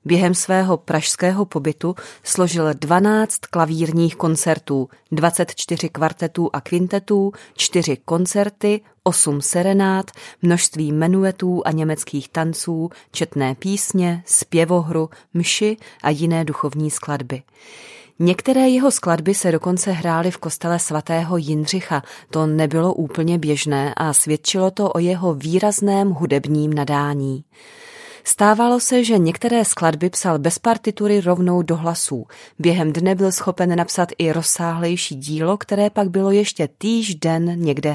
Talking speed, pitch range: 120 wpm, 155-190 Hz